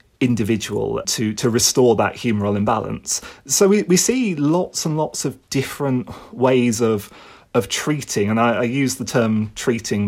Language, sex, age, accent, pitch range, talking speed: English, male, 30-49, British, 110-145 Hz, 160 wpm